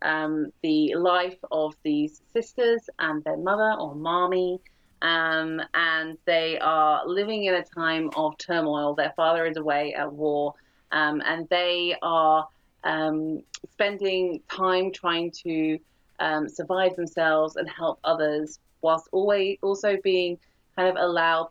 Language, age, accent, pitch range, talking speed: English, 30-49, British, 155-180 Hz, 135 wpm